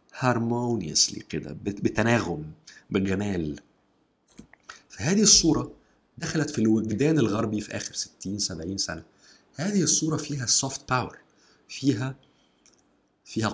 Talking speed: 90 wpm